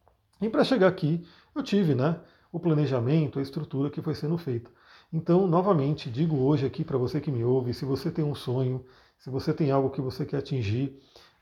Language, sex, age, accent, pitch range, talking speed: Portuguese, male, 40-59, Brazilian, 135-170 Hz, 200 wpm